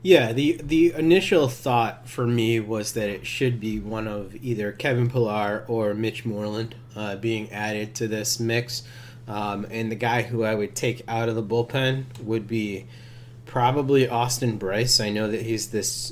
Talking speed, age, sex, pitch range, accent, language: 180 wpm, 20-39, male, 110-125 Hz, American, English